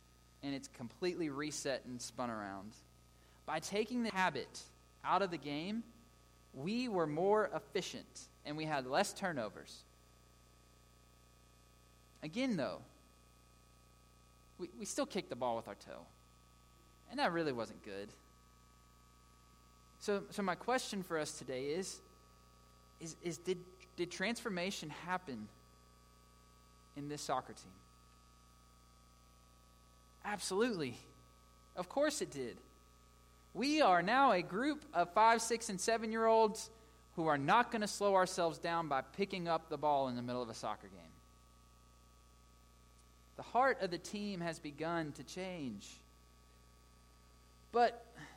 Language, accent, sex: English, American, male